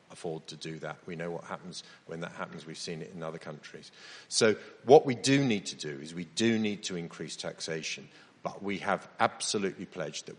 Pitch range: 80-95 Hz